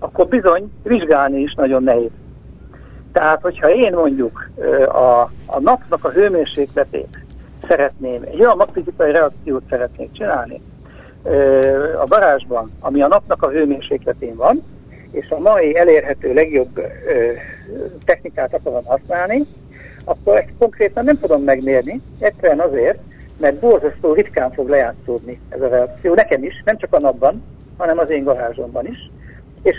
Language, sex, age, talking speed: Hungarian, male, 60-79, 135 wpm